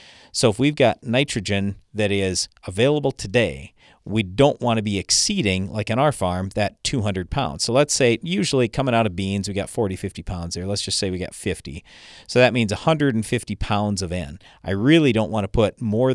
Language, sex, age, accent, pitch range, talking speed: English, male, 50-69, American, 95-125 Hz, 210 wpm